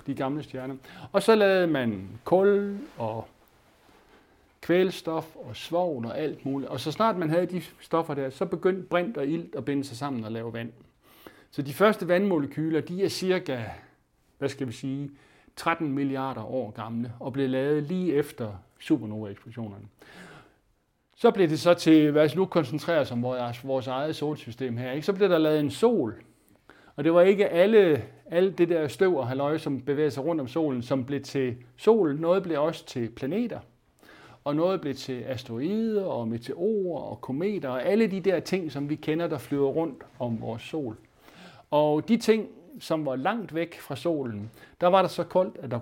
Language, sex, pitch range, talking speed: Danish, male, 130-180 Hz, 185 wpm